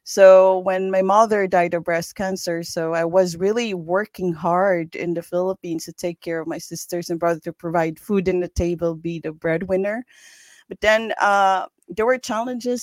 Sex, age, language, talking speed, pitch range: female, 30-49, English, 185 wpm, 175-215 Hz